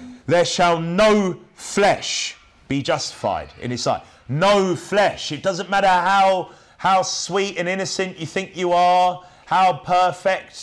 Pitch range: 145-185 Hz